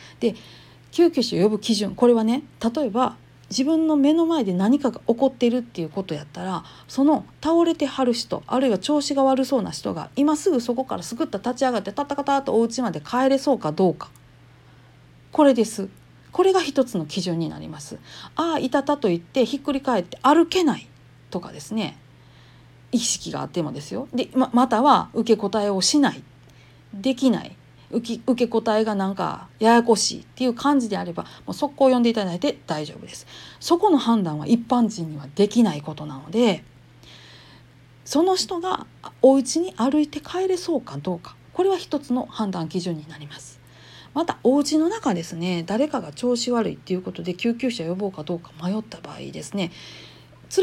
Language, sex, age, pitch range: Japanese, female, 40-59, 185-280 Hz